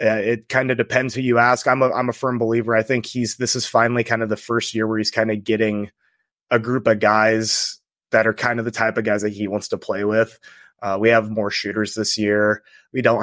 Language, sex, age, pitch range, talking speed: English, male, 20-39, 105-120 Hz, 260 wpm